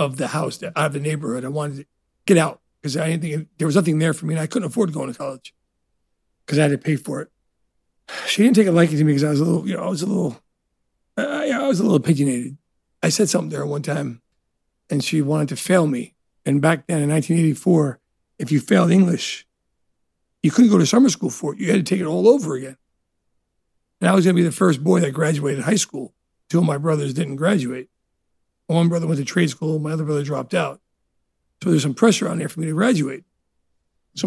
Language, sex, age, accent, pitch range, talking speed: English, male, 50-69, American, 145-190 Hz, 245 wpm